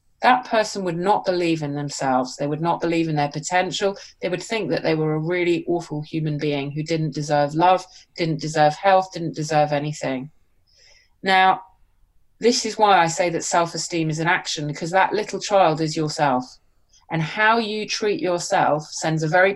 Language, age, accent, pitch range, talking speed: English, 30-49, British, 155-205 Hz, 185 wpm